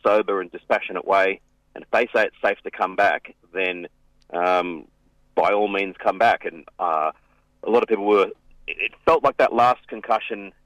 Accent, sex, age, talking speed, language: Australian, male, 30-49, 185 wpm, English